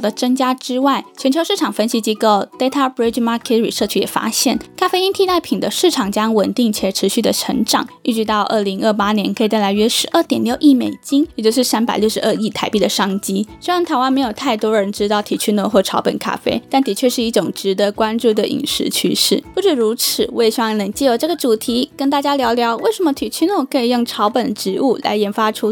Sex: female